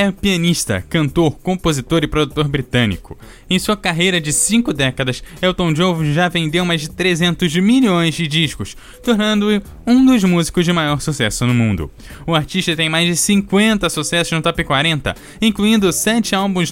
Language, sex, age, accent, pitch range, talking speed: Portuguese, male, 10-29, Brazilian, 135-185 Hz, 160 wpm